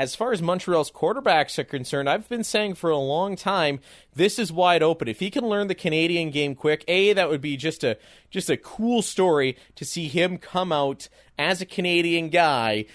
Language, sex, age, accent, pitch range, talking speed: English, male, 30-49, American, 135-175 Hz, 210 wpm